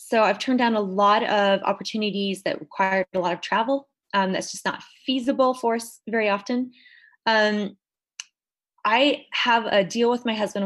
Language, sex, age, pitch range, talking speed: English, female, 20-39, 185-230 Hz, 175 wpm